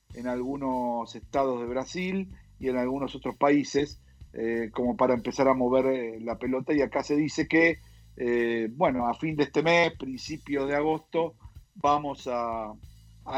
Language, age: Spanish, 50-69